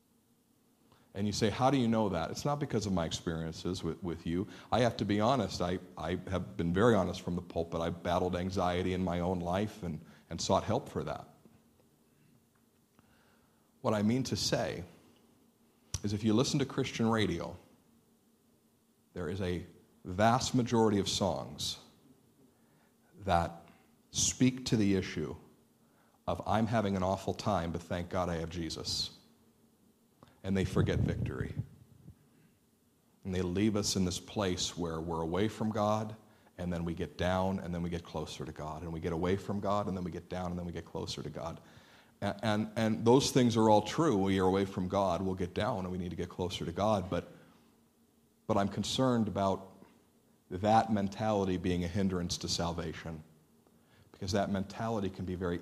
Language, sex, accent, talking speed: English, male, American, 180 wpm